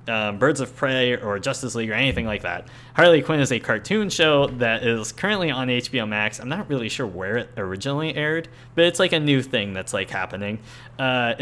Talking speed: 215 wpm